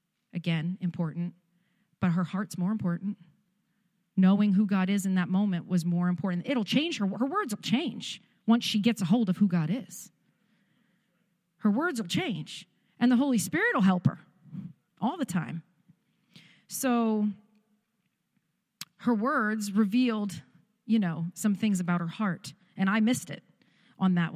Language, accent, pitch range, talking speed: English, American, 180-230 Hz, 160 wpm